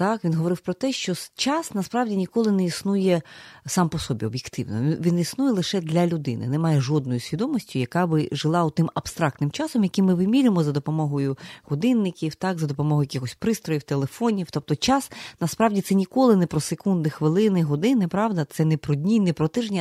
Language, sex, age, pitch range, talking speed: Ukrainian, female, 30-49, 145-185 Hz, 180 wpm